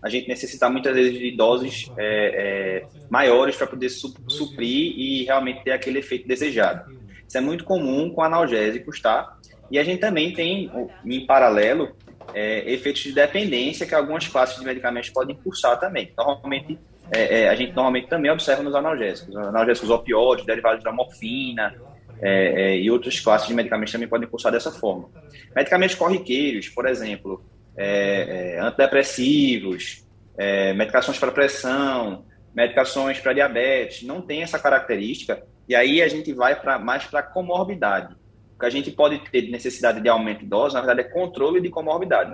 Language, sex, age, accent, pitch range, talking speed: Portuguese, male, 20-39, Brazilian, 115-150 Hz, 165 wpm